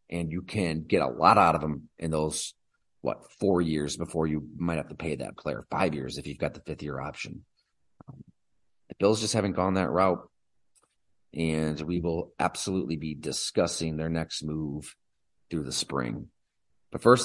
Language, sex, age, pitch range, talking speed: English, male, 30-49, 80-100 Hz, 180 wpm